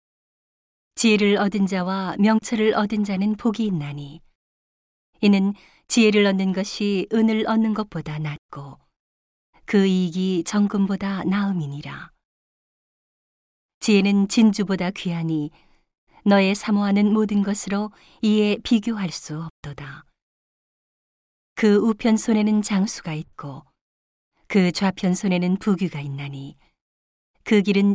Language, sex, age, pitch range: Korean, female, 40-59, 170-210 Hz